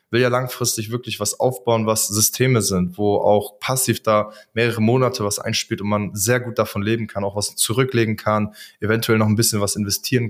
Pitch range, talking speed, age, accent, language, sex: 105-125 Hz, 200 wpm, 20-39, German, German, male